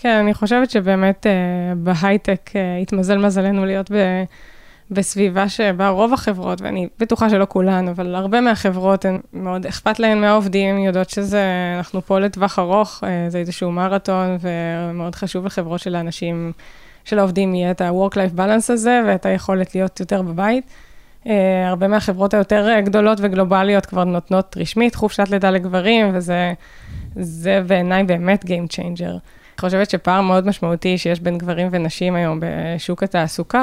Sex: female